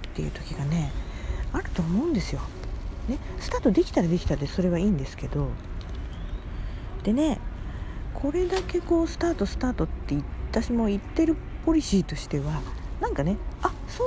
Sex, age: female, 40-59